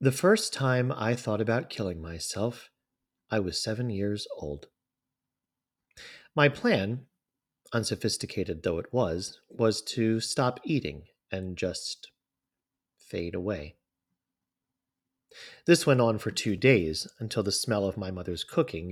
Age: 40-59